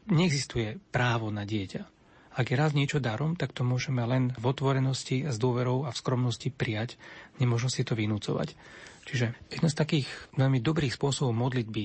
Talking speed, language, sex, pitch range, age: 165 wpm, Slovak, male, 115-145 Hz, 40-59